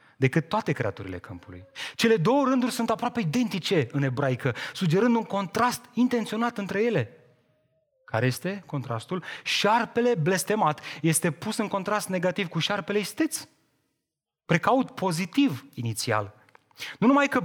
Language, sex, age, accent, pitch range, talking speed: Romanian, male, 30-49, native, 130-190 Hz, 125 wpm